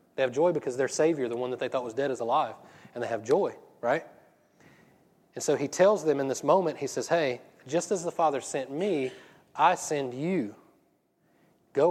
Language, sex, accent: English, male, American